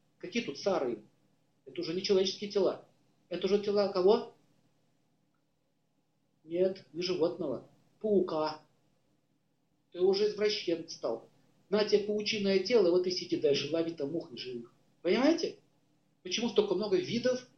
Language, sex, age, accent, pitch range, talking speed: Russian, male, 50-69, native, 150-215 Hz, 125 wpm